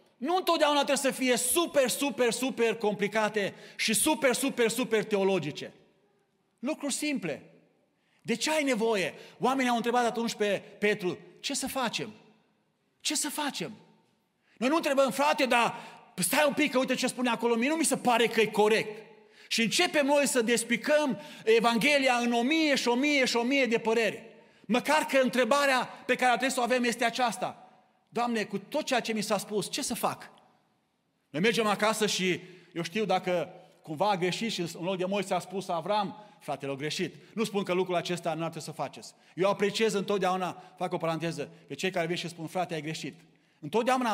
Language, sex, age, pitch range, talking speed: Romanian, male, 40-59, 195-250 Hz, 190 wpm